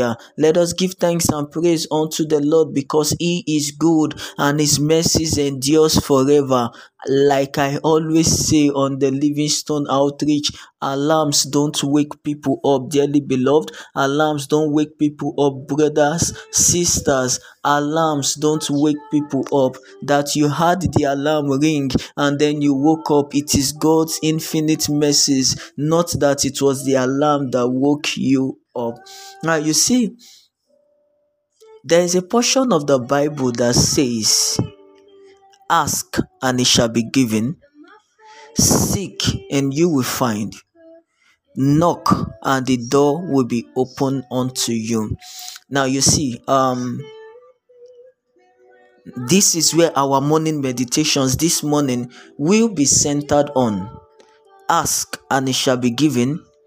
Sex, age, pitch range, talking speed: male, 20-39, 135-160 Hz, 135 wpm